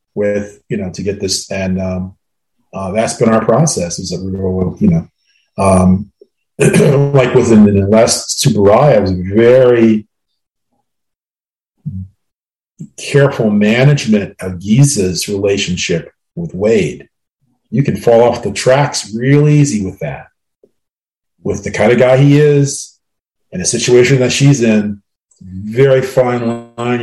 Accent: American